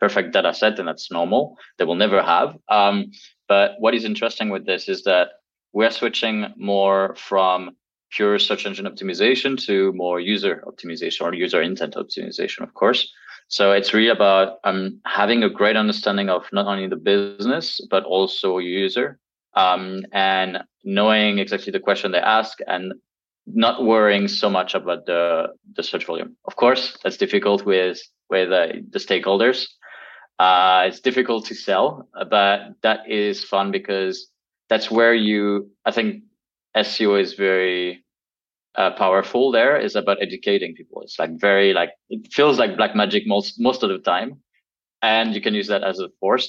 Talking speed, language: 165 wpm, English